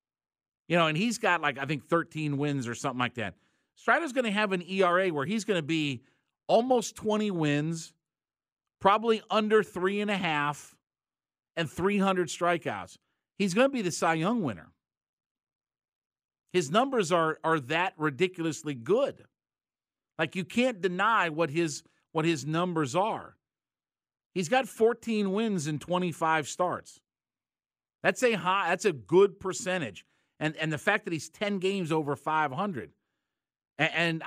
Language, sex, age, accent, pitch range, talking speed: English, male, 50-69, American, 150-195 Hz, 155 wpm